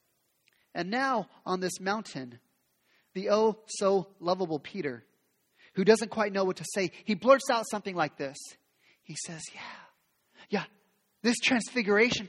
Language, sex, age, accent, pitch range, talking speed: English, male, 30-49, American, 185-295 Hz, 140 wpm